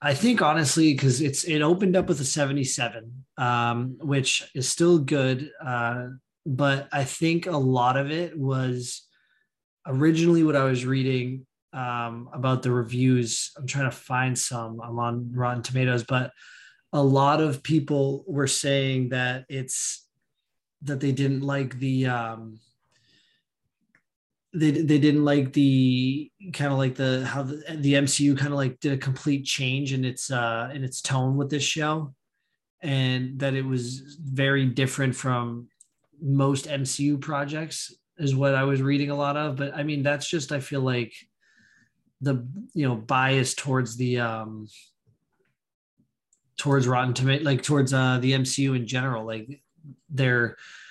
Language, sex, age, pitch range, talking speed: English, male, 20-39, 125-145 Hz, 155 wpm